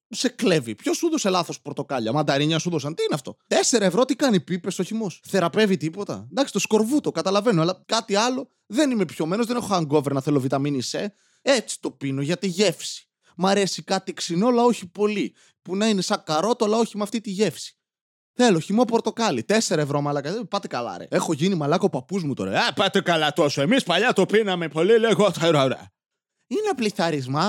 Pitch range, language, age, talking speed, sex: 175-255 Hz, Greek, 20-39, 195 wpm, male